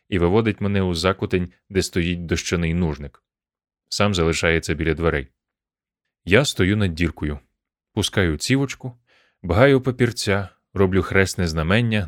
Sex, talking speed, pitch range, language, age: male, 120 wpm, 85-120 Hz, Ukrainian, 30-49